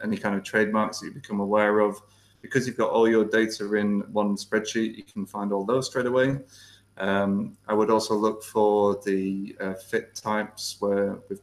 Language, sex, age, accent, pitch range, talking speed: English, male, 20-39, British, 100-110 Hz, 195 wpm